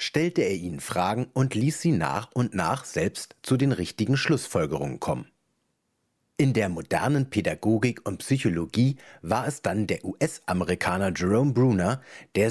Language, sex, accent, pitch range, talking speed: German, male, German, 100-130 Hz, 145 wpm